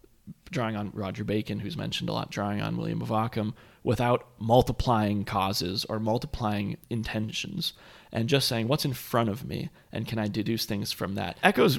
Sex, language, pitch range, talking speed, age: male, English, 105-120 Hz, 180 wpm, 30-49